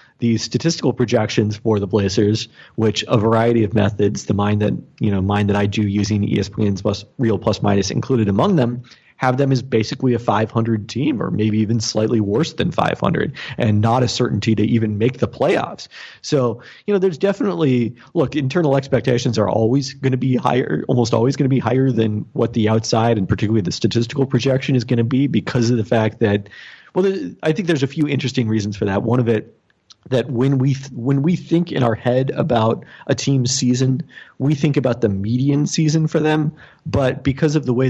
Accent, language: American, English